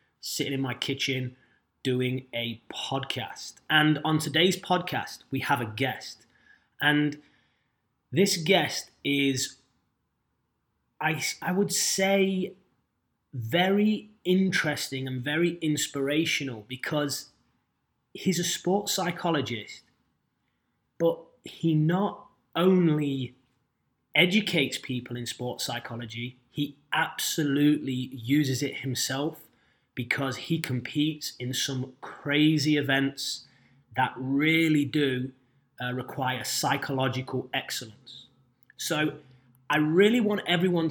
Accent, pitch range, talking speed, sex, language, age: British, 130-165 Hz, 95 wpm, male, English, 20-39